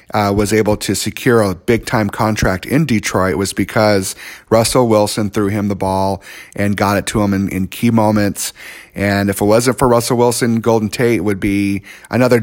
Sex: male